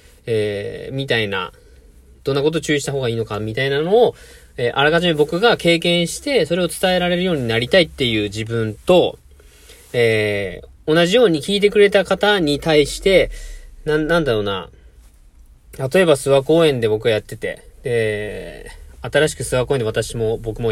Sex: male